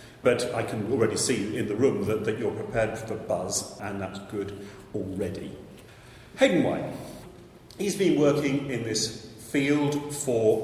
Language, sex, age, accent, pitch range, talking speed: English, male, 40-59, British, 100-135 Hz, 150 wpm